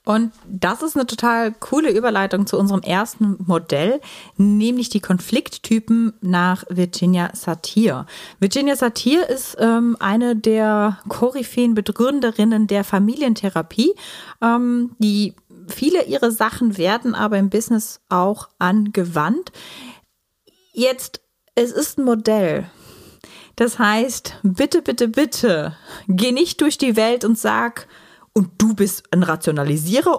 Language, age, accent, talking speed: German, 30-49, German, 120 wpm